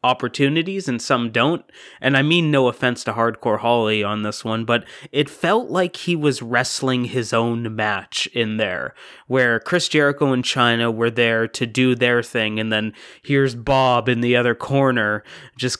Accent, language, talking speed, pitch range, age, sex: American, English, 180 wpm, 110-130 Hz, 20-39, male